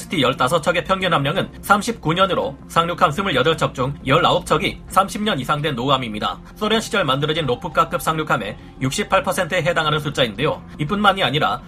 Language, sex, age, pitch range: Korean, male, 40-59, 140-185 Hz